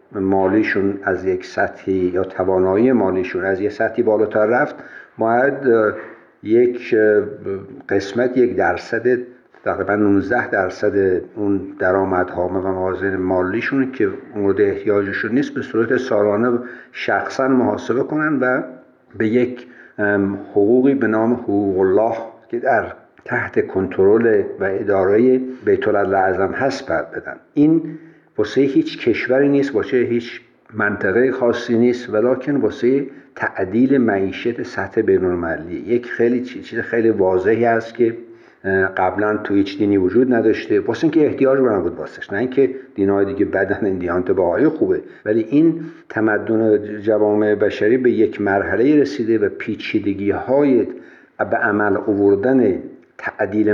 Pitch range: 100-130 Hz